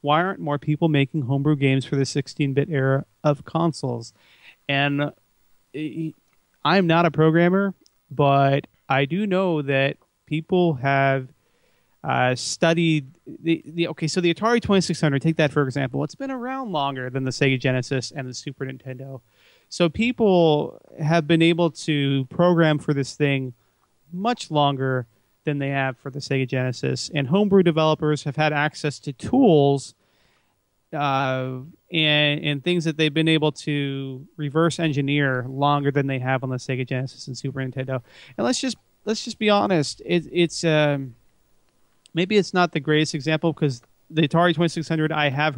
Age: 30-49